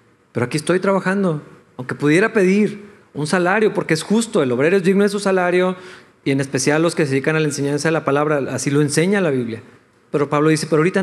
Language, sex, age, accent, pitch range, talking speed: Spanish, male, 40-59, Mexican, 145-185 Hz, 230 wpm